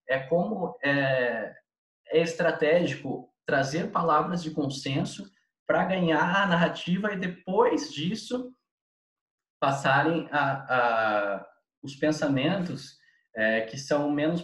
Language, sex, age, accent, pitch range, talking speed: Portuguese, male, 20-39, Brazilian, 135-185 Hz, 105 wpm